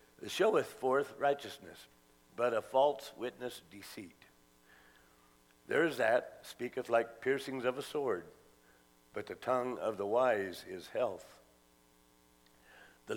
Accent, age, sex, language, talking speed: American, 60-79, male, English, 125 wpm